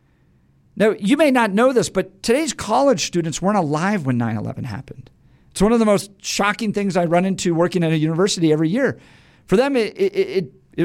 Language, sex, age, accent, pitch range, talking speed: English, male, 50-69, American, 175-235 Hz, 205 wpm